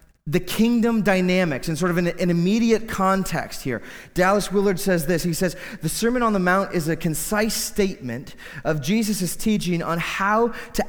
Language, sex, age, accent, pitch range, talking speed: English, male, 30-49, American, 160-205 Hz, 170 wpm